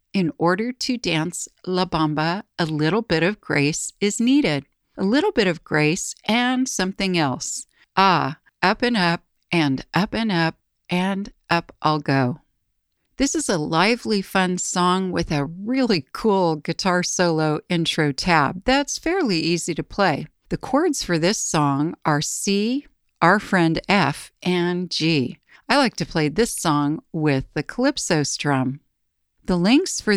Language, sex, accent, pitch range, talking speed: English, female, American, 160-220 Hz, 155 wpm